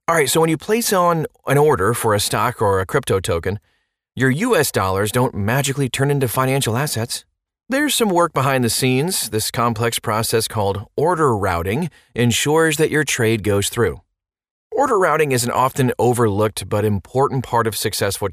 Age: 30-49